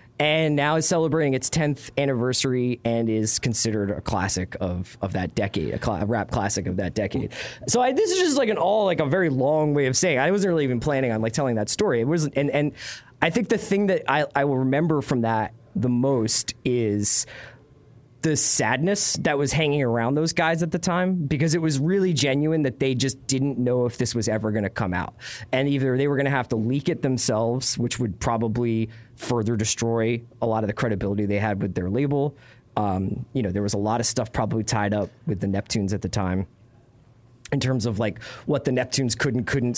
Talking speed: 230 wpm